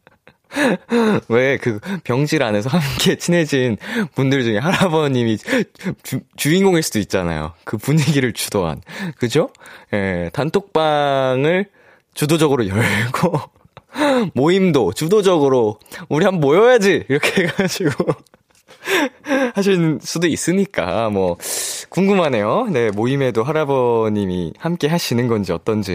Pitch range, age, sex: 110-175 Hz, 20-39, male